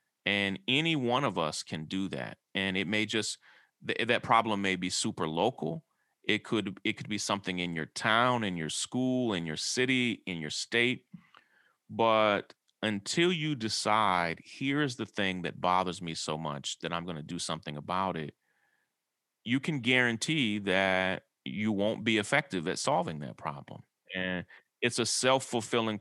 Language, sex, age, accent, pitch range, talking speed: English, male, 30-49, American, 90-115 Hz, 165 wpm